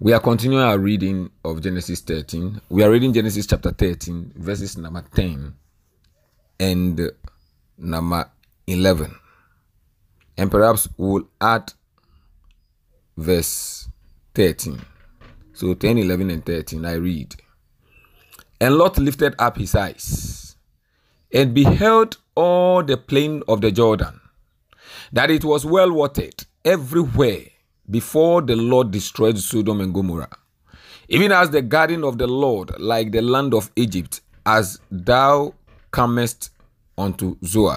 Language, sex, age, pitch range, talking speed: English, male, 40-59, 90-125 Hz, 120 wpm